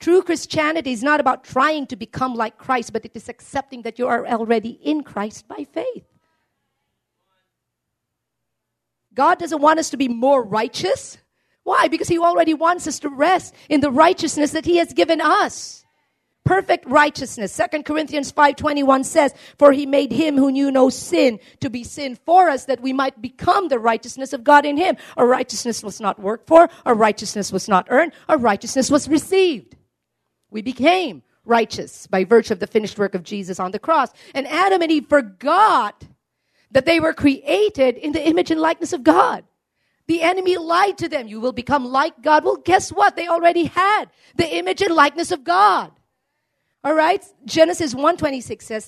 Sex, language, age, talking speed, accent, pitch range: female, English, 40-59, 185 wpm, American, 230-320 Hz